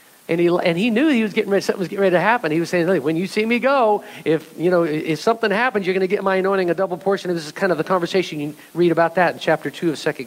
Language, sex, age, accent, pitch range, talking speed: English, male, 50-69, American, 165-230 Hz, 320 wpm